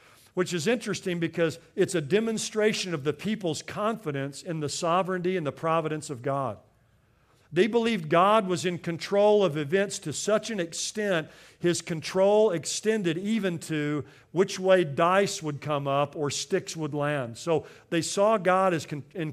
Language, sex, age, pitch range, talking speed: English, male, 50-69, 140-185 Hz, 160 wpm